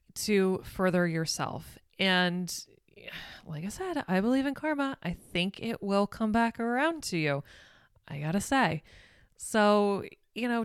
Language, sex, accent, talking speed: English, female, American, 145 wpm